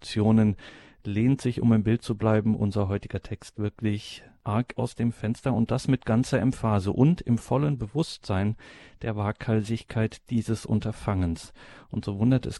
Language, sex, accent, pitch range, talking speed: German, male, German, 105-120 Hz, 150 wpm